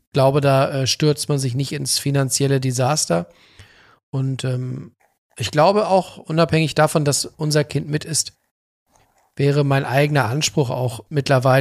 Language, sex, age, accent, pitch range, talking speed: German, male, 40-59, German, 130-150 Hz, 145 wpm